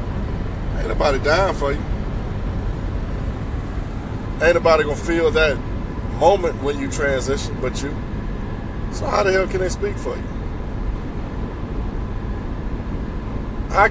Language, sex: English, male